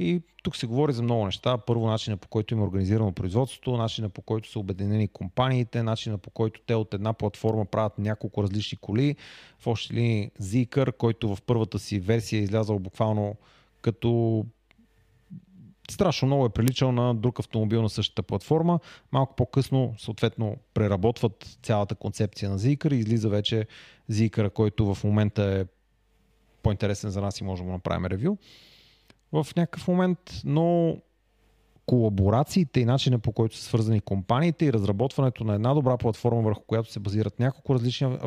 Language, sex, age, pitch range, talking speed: Bulgarian, male, 30-49, 110-135 Hz, 160 wpm